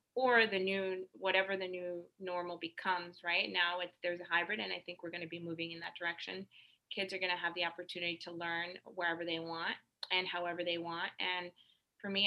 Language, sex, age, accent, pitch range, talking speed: English, female, 20-39, American, 170-185 Hz, 205 wpm